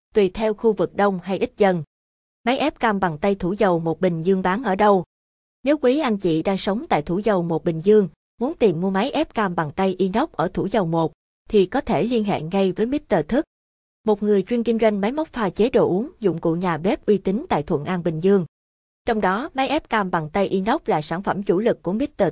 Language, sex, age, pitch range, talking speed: Vietnamese, female, 20-39, 180-235 Hz, 245 wpm